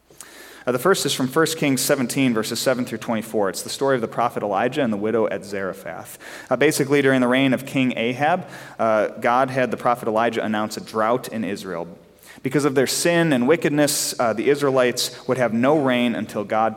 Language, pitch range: English, 100-130 Hz